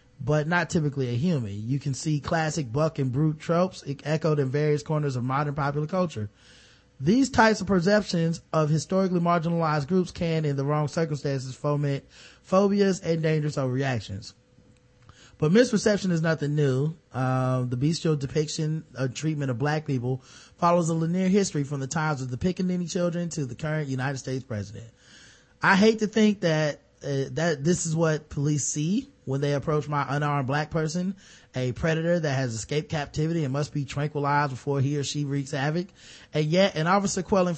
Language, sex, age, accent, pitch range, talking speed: English, male, 20-39, American, 135-165 Hz, 175 wpm